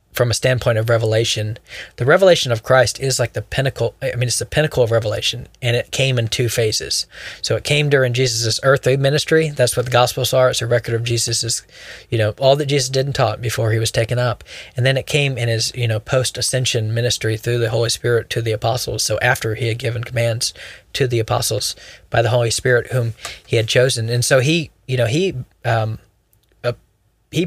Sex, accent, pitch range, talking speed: male, American, 115-130 Hz, 215 wpm